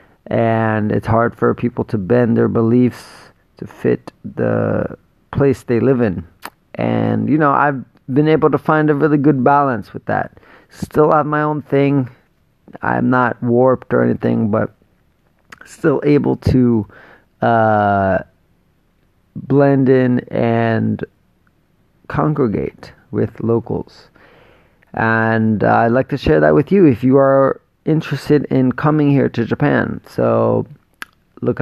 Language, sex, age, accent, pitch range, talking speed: English, male, 30-49, American, 110-135 Hz, 135 wpm